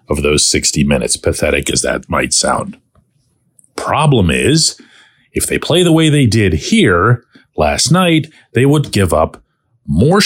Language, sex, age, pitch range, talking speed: English, male, 40-59, 100-140 Hz, 150 wpm